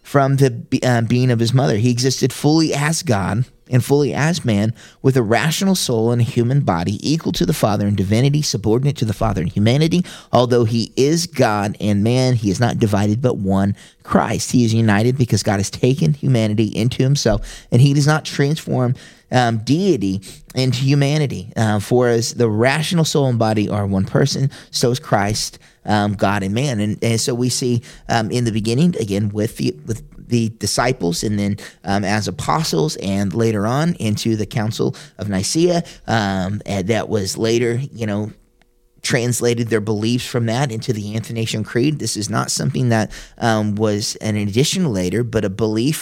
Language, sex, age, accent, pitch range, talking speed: English, male, 30-49, American, 105-135 Hz, 185 wpm